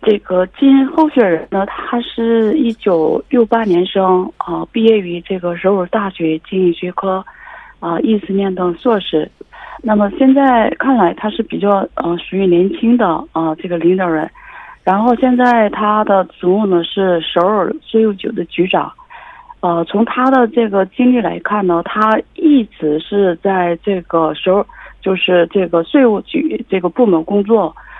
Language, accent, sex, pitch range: Korean, Chinese, female, 180-230 Hz